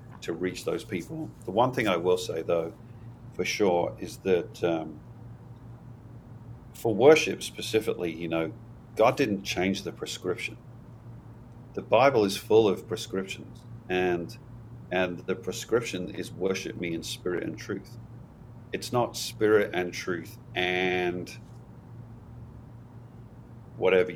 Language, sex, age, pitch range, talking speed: English, male, 40-59, 95-120 Hz, 125 wpm